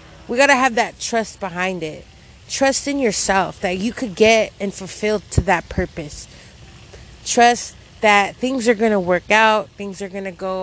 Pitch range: 185-250 Hz